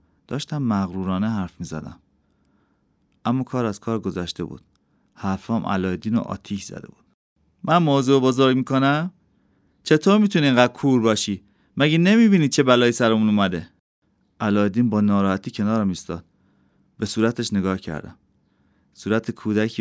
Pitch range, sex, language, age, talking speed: 95-125 Hz, male, Persian, 30-49, 135 wpm